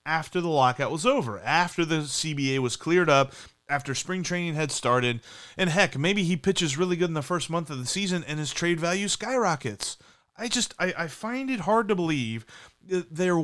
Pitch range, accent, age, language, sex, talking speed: 130-175 Hz, American, 30-49, English, male, 205 wpm